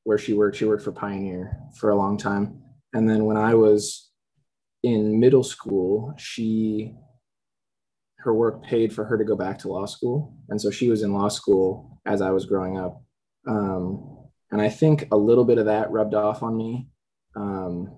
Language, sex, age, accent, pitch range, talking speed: English, male, 20-39, American, 100-115 Hz, 190 wpm